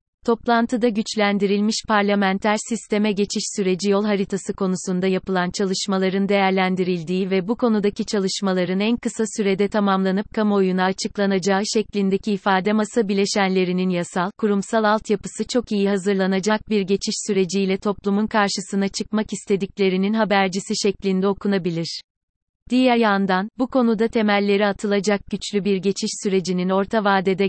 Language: Turkish